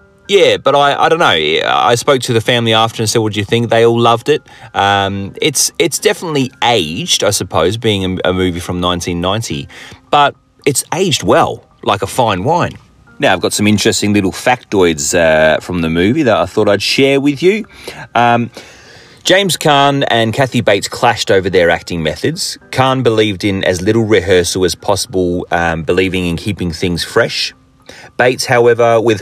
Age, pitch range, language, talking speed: 30-49, 90-120 Hz, English, 185 wpm